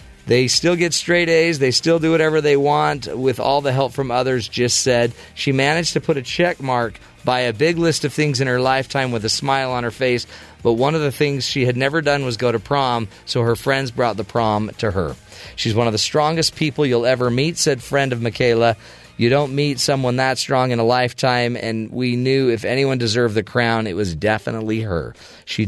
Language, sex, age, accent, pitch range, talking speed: English, male, 40-59, American, 110-140 Hz, 225 wpm